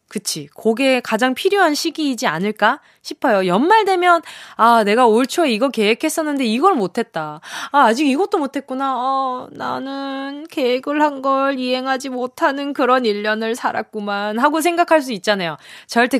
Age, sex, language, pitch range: 20-39, female, Korean, 210-305 Hz